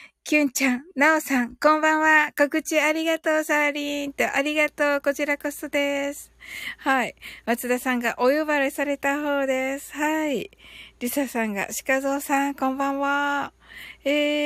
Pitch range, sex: 230-290 Hz, female